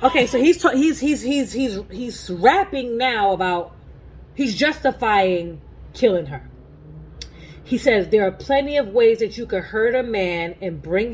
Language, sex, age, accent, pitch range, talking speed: English, female, 30-49, American, 170-260 Hz, 165 wpm